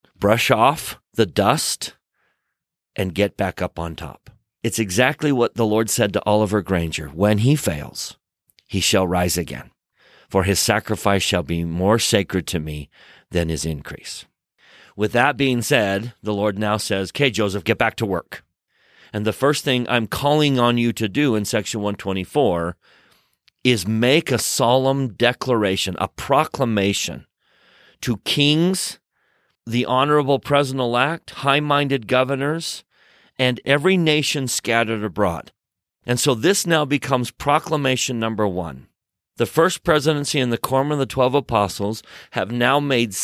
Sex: male